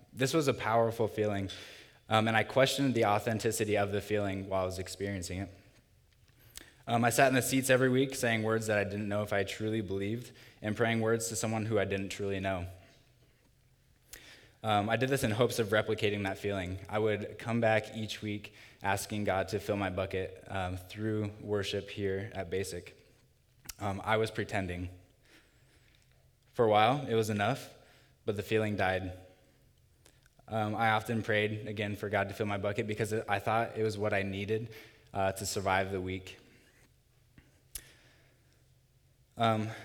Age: 10-29